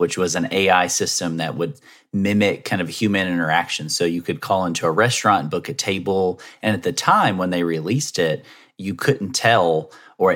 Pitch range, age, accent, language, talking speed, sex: 90-115 Hz, 30-49, American, English, 195 wpm, male